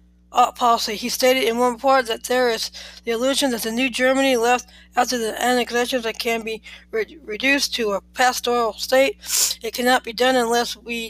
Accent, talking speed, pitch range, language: American, 185 wpm, 230-260 Hz, English